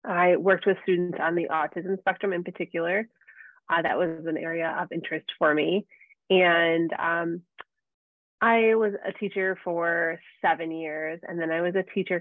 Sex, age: female, 20-39